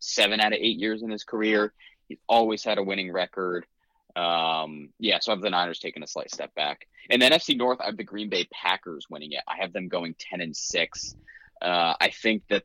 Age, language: 20-39, English